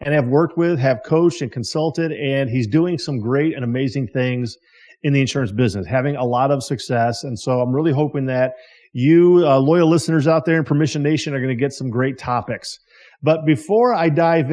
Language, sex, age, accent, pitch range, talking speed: English, male, 40-59, American, 130-165 Hz, 210 wpm